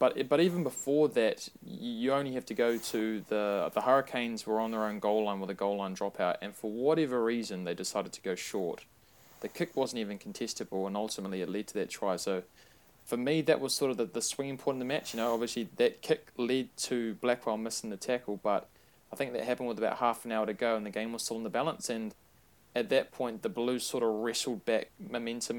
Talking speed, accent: 240 wpm, Australian